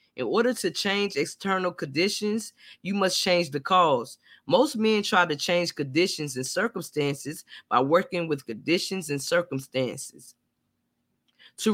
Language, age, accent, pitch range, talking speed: English, 20-39, American, 155-210 Hz, 135 wpm